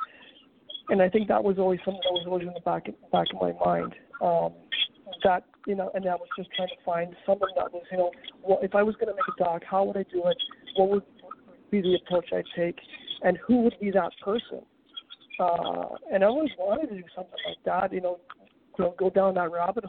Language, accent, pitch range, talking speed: English, American, 180-235 Hz, 230 wpm